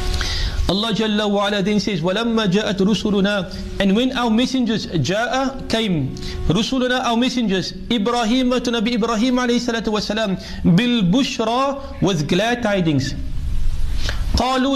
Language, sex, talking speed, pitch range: English, male, 85 wpm, 190-250 Hz